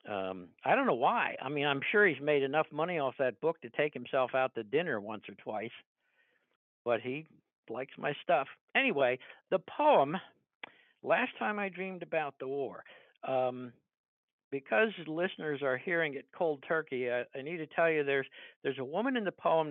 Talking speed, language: 185 wpm, English